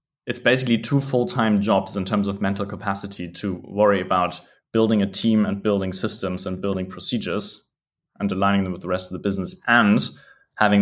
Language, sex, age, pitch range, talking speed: English, male, 20-39, 95-115 Hz, 185 wpm